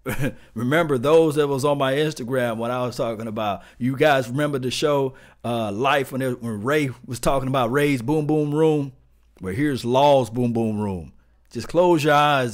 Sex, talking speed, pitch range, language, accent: male, 195 wpm, 110-145 Hz, English, American